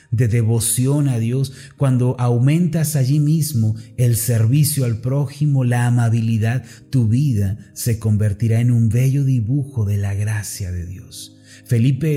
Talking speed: 140 wpm